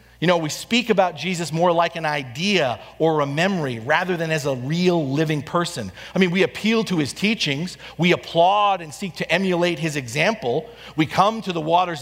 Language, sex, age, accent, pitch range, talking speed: English, male, 40-59, American, 125-190 Hz, 200 wpm